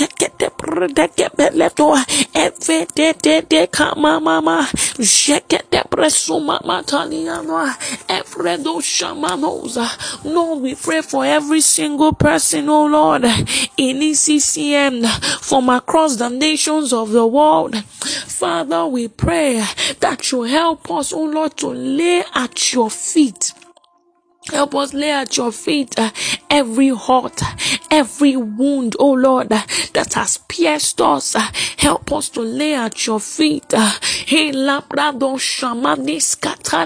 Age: 20-39